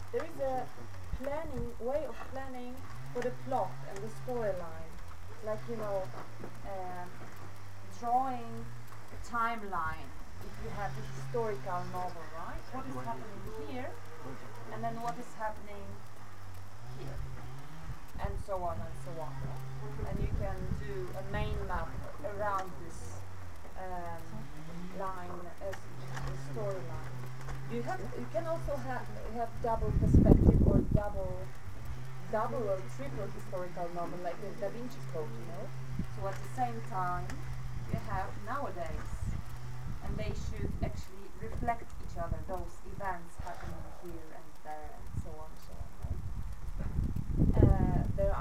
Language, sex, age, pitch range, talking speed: Ukrainian, female, 30-49, 105-170 Hz, 135 wpm